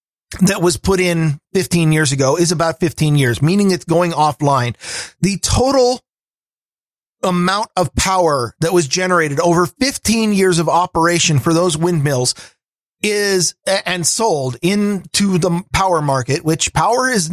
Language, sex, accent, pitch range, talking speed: English, male, American, 165-205 Hz, 140 wpm